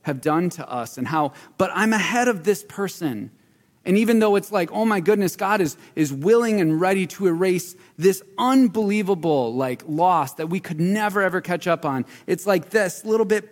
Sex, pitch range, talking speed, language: male, 130-190 Hz, 200 wpm, English